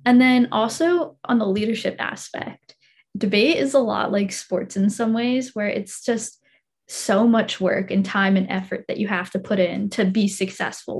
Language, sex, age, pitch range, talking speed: English, female, 10-29, 200-235 Hz, 190 wpm